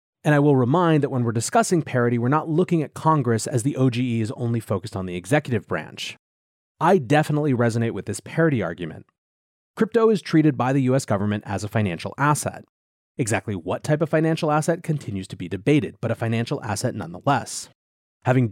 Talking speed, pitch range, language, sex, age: 190 wpm, 110-155 Hz, English, male, 30-49